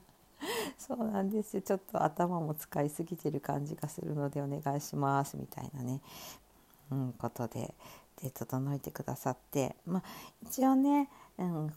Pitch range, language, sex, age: 145-200 Hz, Japanese, female, 60-79